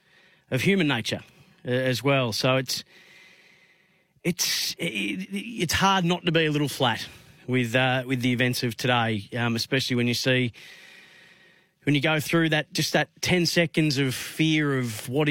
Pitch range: 120-145 Hz